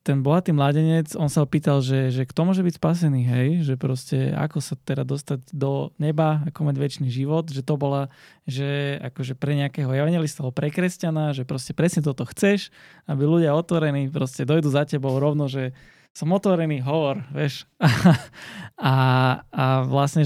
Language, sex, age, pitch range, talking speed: Slovak, male, 20-39, 135-155 Hz, 165 wpm